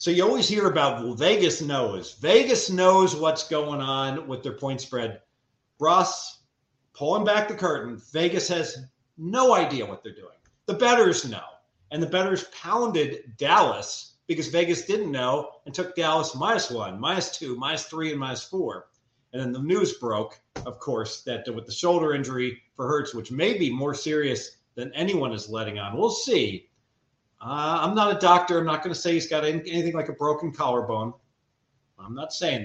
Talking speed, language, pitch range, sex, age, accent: 180 wpm, English, 130-170 Hz, male, 40-59, American